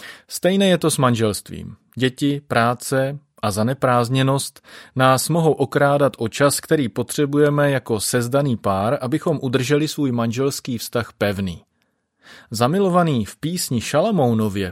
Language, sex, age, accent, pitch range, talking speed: Czech, male, 30-49, native, 110-145 Hz, 120 wpm